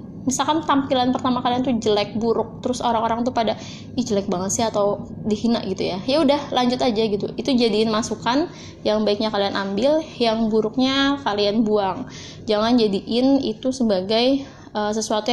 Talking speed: 160 wpm